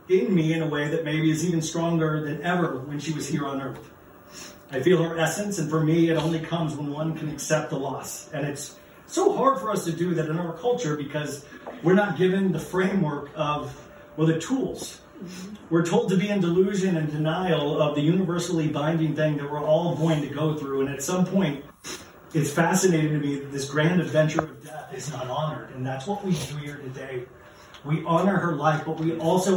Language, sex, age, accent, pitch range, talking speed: English, male, 40-59, American, 150-175 Hz, 215 wpm